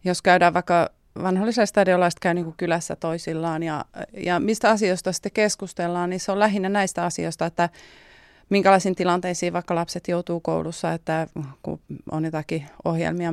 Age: 30-49